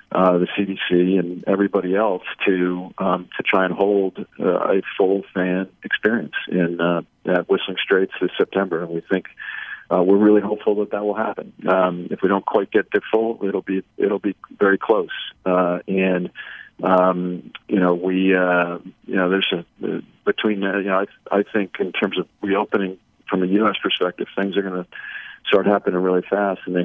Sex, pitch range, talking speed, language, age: male, 90-100 Hz, 200 wpm, English, 40-59